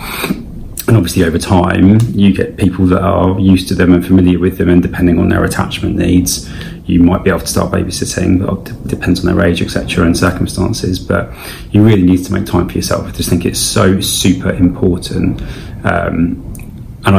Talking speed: 190 wpm